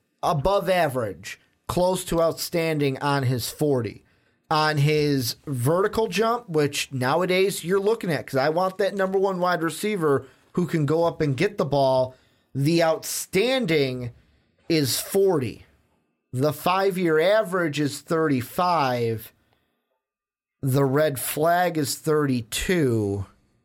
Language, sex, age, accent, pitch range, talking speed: English, male, 30-49, American, 130-170 Hz, 120 wpm